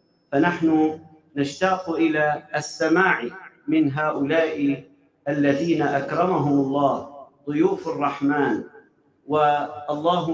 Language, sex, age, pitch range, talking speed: Arabic, male, 50-69, 145-180 Hz, 70 wpm